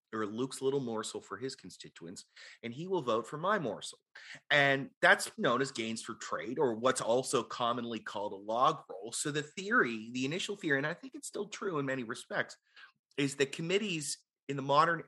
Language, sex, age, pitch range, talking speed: English, male, 30-49, 115-150 Hz, 200 wpm